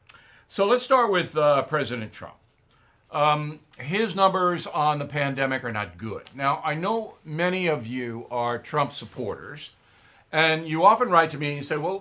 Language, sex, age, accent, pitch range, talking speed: English, male, 60-79, American, 115-165 Hz, 170 wpm